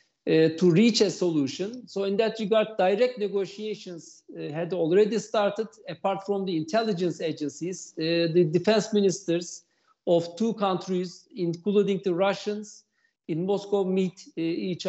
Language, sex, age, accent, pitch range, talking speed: Turkish, male, 50-69, native, 175-215 Hz, 140 wpm